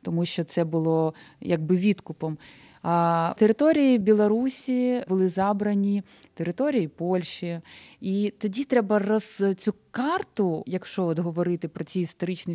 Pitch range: 175-215 Hz